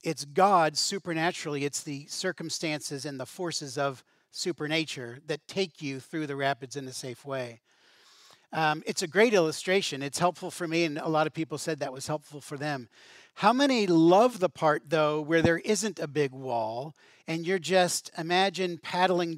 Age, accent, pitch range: 40-59, American, 145-190 Hz